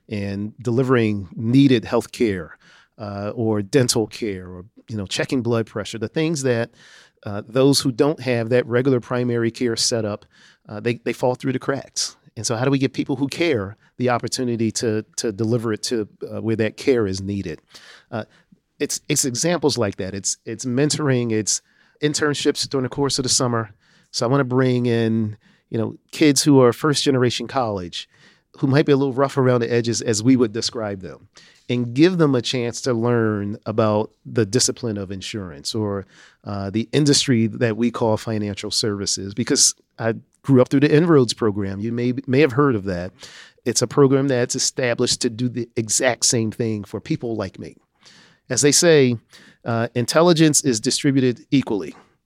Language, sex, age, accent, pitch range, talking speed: English, male, 40-59, American, 110-135 Hz, 185 wpm